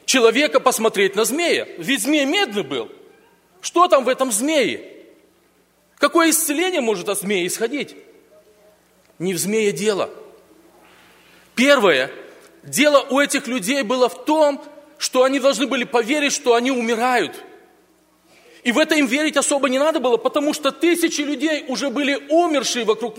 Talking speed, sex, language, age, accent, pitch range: 145 wpm, male, Russian, 40-59, native, 235-300 Hz